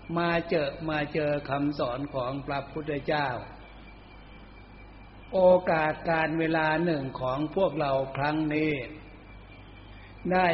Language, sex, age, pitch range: Thai, male, 60-79, 115-165 Hz